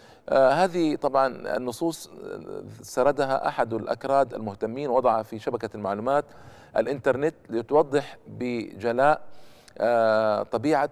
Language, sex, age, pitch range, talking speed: Arabic, male, 50-69, 120-150 Hz, 95 wpm